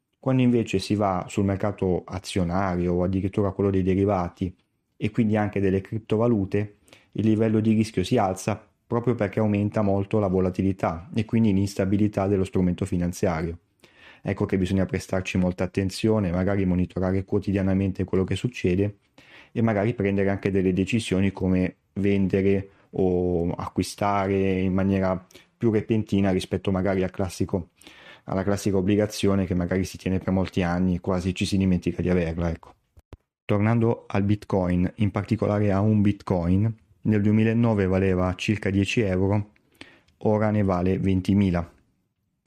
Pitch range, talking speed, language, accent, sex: 95-105 Hz, 145 wpm, Italian, native, male